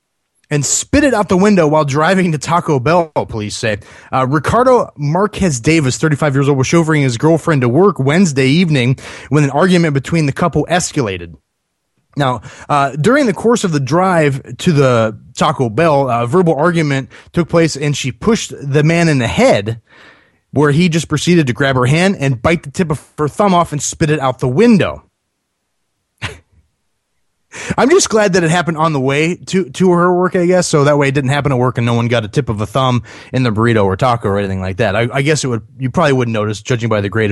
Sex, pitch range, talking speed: male, 125-170 Hz, 220 wpm